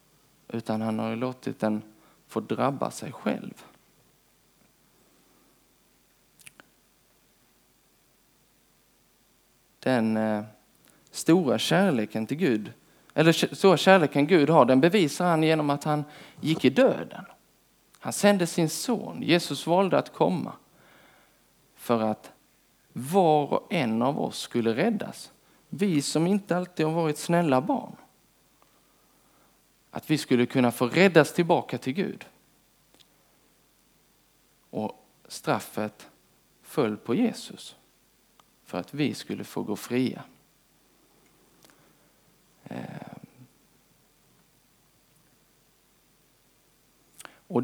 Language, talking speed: Swedish, 95 wpm